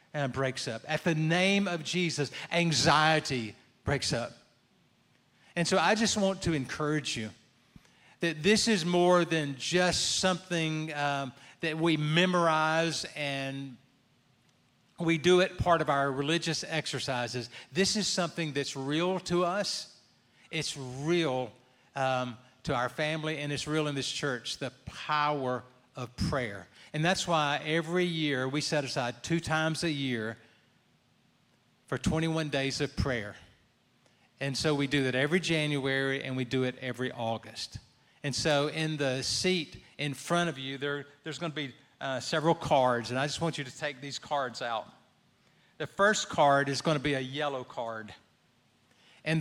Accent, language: American, English